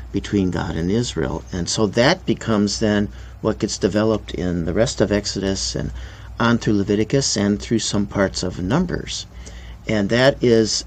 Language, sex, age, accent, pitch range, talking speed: English, male, 50-69, American, 95-125 Hz, 165 wpm